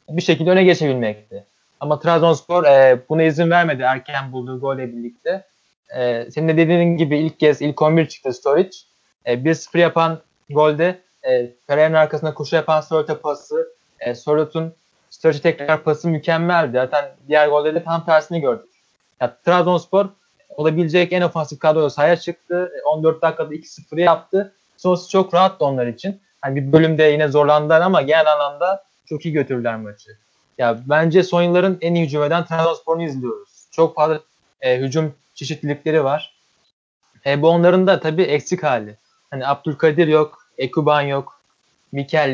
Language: Turkish